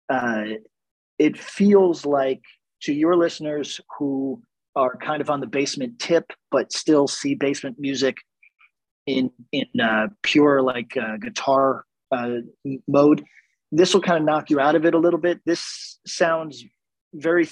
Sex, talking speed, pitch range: male, 150 wpm, 130-165 Hz